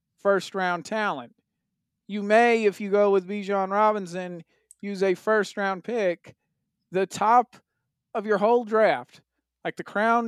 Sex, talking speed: male, 145 wpm